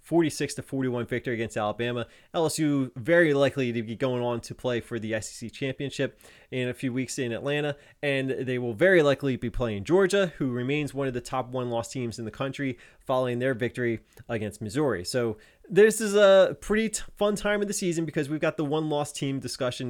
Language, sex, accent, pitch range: English, male, American, 120-145 Hz